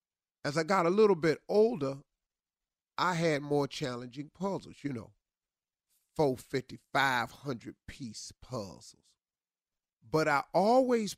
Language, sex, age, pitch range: English, male, 40-59, 115-155 Hz